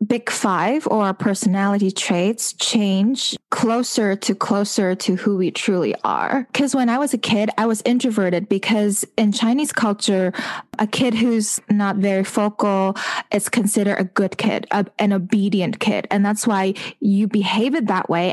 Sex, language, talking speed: female, English, 165 wpm